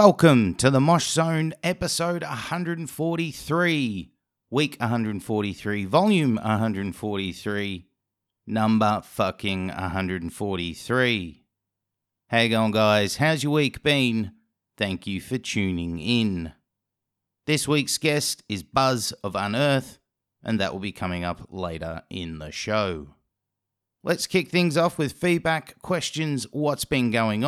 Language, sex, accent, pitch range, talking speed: English, male, Australian, 105-145 Hz, 115 wpm